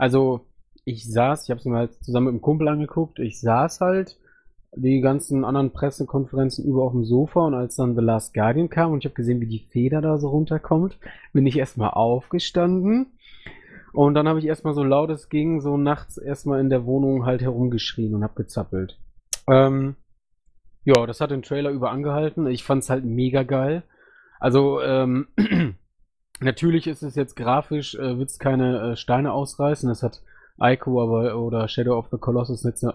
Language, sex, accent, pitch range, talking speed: German, male, German, 120-145 Hz, 190 wpm